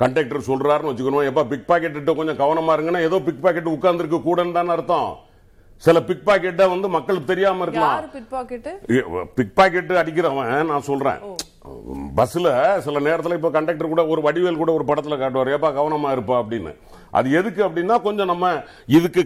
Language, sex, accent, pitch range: Tamil, male, native, 145-190 Hz